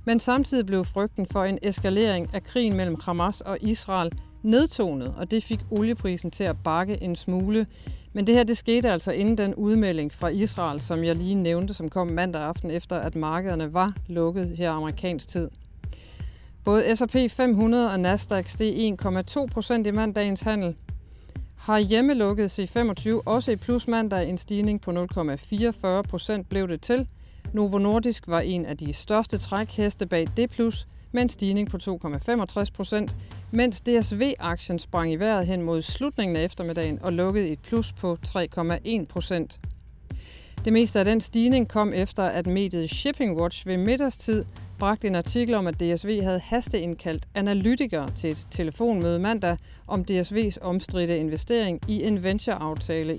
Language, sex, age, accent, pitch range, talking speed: Danish, female, 40-59, native, 170-220 Hz, 155 wpm